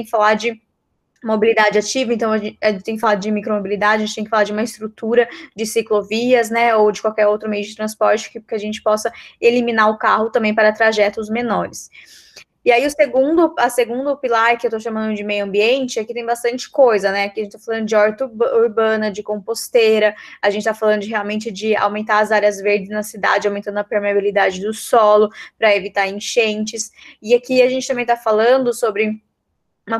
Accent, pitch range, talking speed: Brazilian, 210-235 Hz, 200 wpm